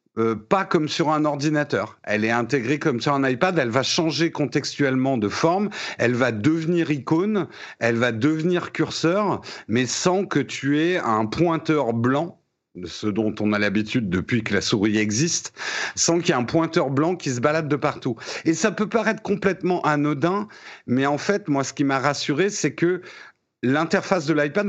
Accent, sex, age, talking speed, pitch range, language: French, male, 50-69, 185 wpm, 125-170 Hz, French